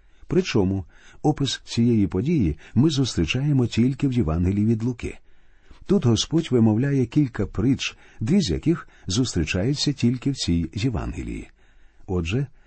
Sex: male